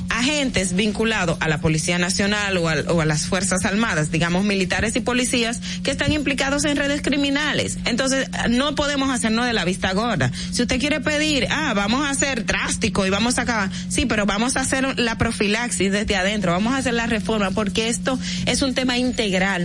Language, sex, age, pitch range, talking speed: Spanish, female, 30-49, 190-255 Hz, 195 wpm